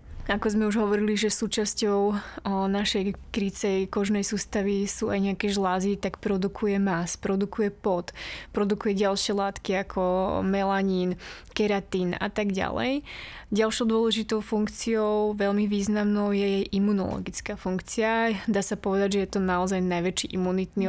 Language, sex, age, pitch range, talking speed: Slovak, female, 20-39, 190-210 Hz, 130 wpm